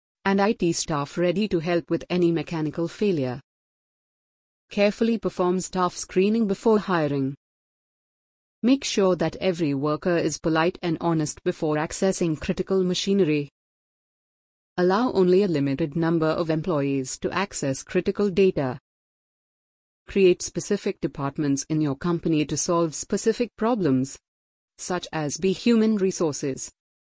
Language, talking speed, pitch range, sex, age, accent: English, 120 wpm, 155-190 Hz, female, 30-49, Indian